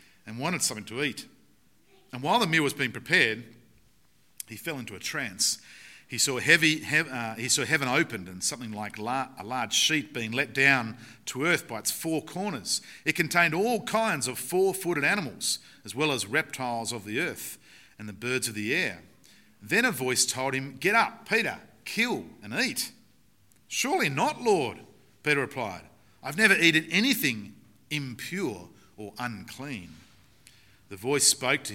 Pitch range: 110-155 Hz